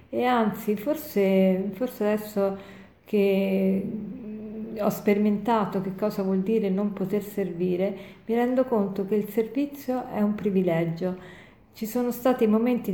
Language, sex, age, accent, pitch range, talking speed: Italian, female, 40-59, native, 190-230 Hz, 130 wpm